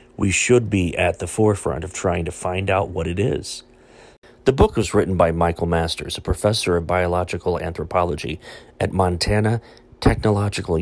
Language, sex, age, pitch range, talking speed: English, male, 40-59, 90-110 Hz, 160 wpm